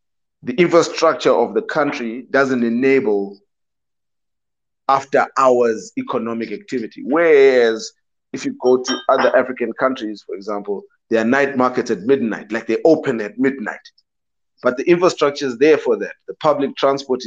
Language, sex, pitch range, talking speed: English, male, 125-175 Hz, 145 wpm